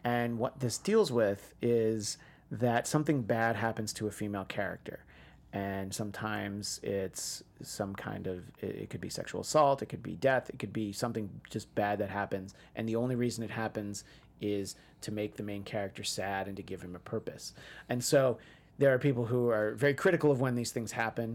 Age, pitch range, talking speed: 30-49, 110-140 Hz, 195 wpm